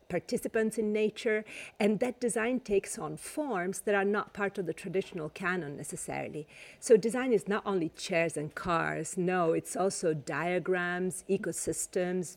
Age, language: 50-69, English